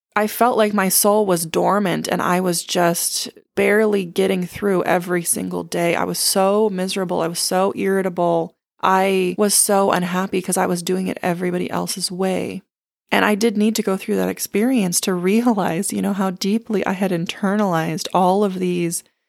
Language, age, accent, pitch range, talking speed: English, 20-39, American, 175-205 Hz, 180 wpm